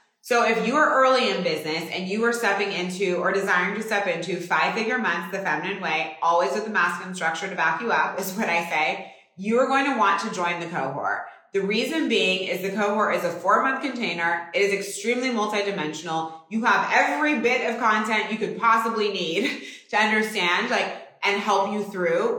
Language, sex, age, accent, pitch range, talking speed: English, female, 20-39, American, 180-215 Hz, 205 wpm